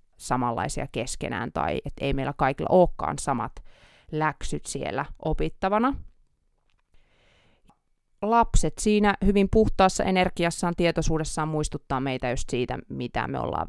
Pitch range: 135-175 Hz